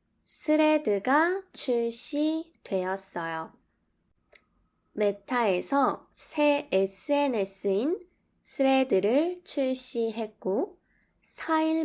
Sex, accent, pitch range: female, native, 190-290 Hz